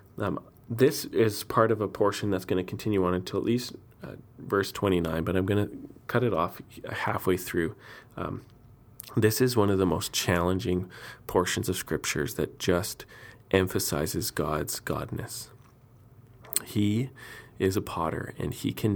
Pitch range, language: 95-115 Hz, English